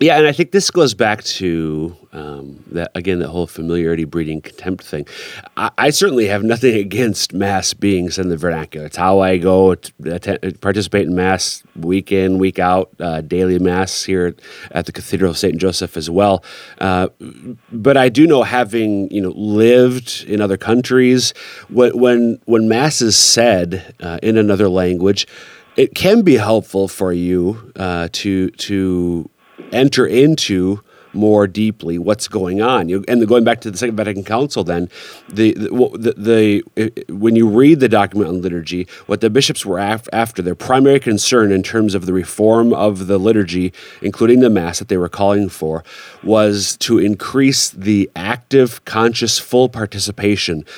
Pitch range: 90-115 Hz